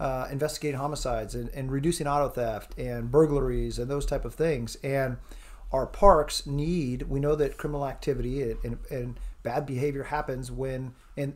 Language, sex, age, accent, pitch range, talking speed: English, male, 40-59, American, 125-150 Hz, 170 wpm